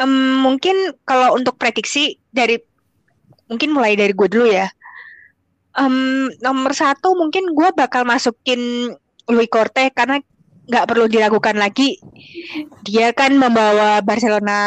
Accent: native